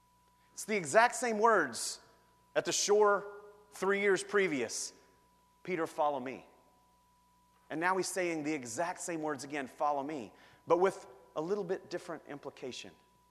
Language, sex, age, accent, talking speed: English, male, 30-49, American, 145 wpm